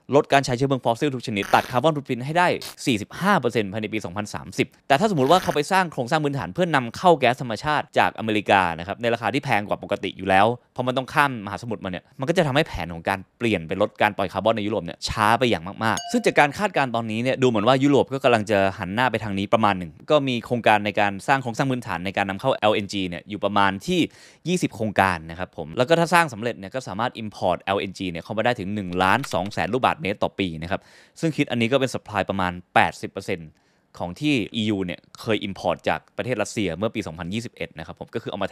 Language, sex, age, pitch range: Thai, male, 20-39, 95-130 Hz